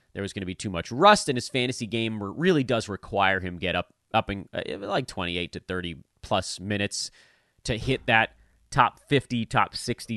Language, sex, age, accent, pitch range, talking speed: English, male, 30-49, American, 100-160 Hz, 200 wpm